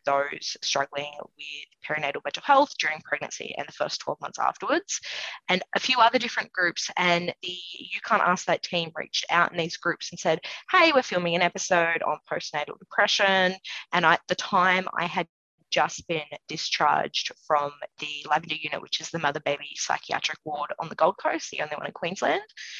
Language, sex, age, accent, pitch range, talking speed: English, female, 20-39, Australian, 160-195 Hz, 185 wpm